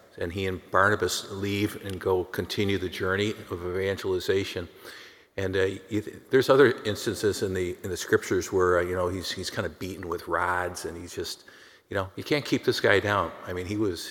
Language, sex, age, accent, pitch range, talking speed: English, male, 50-69, American, 95-110 Hz, 210 wpm